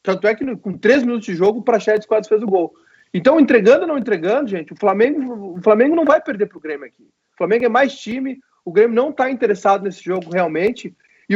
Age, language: 40-59, Portuguese